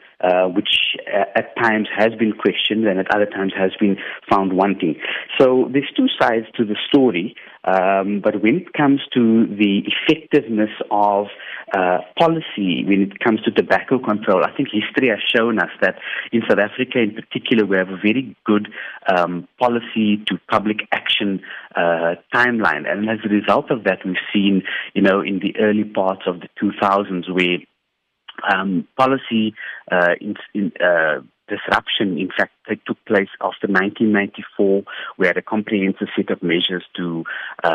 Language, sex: English, male